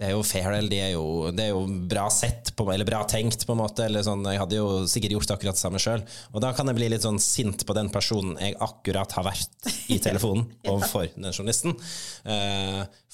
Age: 20-39